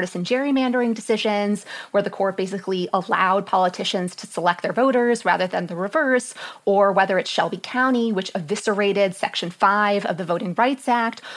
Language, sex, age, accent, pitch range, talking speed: English, female, 30-49, American, 195-235 Hz, 165 wpm